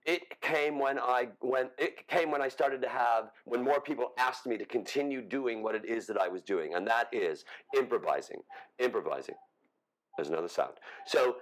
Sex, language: male, English